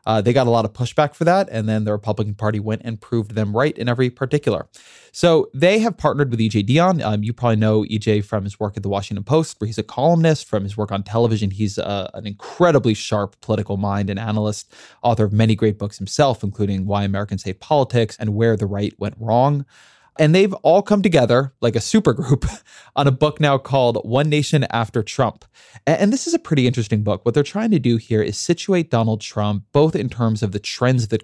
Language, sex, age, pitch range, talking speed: English, male, 20-39, 105-130 Hz, 225 wpm